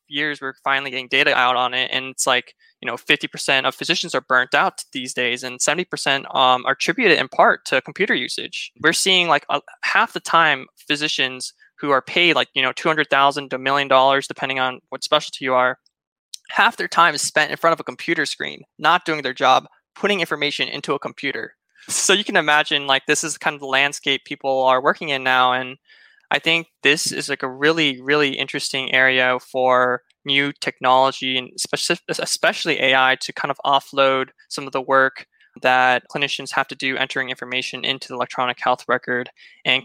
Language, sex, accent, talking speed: English, male, American, 195 wpm